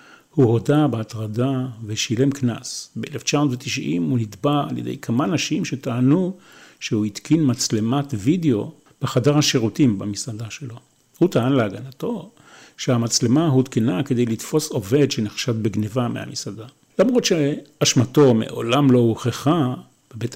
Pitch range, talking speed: 115-150 Hz, 110 wpm